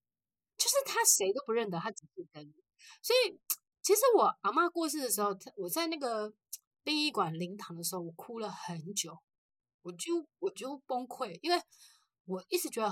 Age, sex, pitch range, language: 30-49, female, 170-255 Hz, Chinese